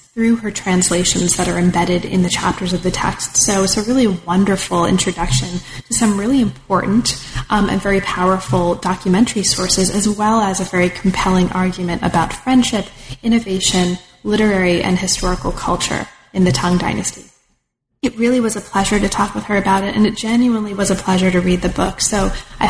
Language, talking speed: English, 180 wpm